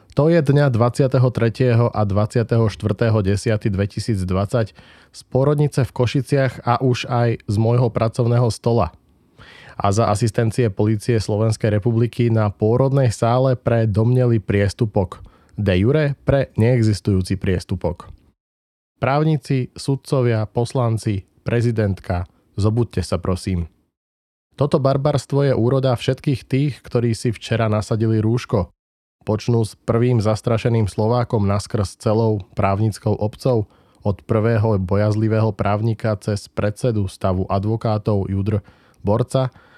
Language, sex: Slovak, male